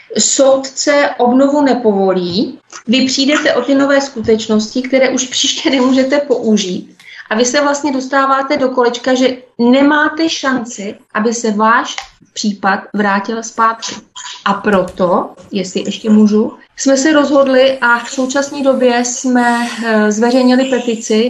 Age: 20-39